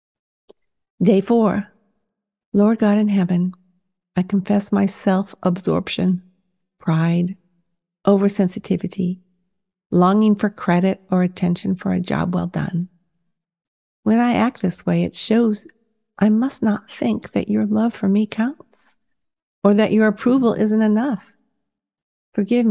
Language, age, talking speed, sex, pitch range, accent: English, 50-69, 120 wpm, female, 185-215 Hz, American